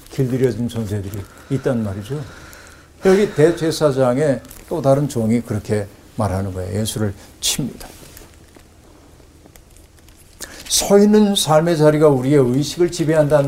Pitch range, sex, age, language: 110-150 Hz, male, 60-79, Korean